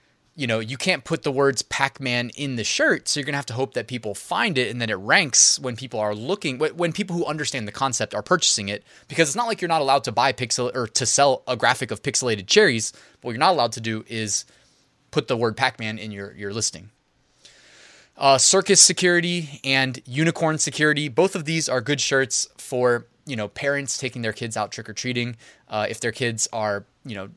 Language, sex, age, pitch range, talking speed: English, male, 20-39, 115-145 Hz, 215 wpm